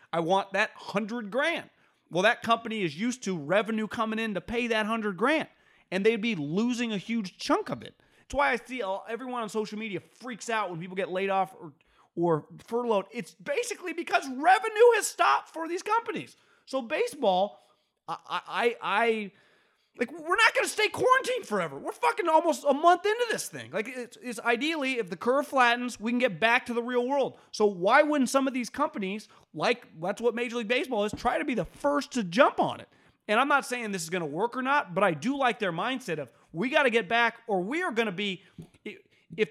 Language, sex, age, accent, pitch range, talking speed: English, male, 30-49, American, 190-265 Hz, 220 wpm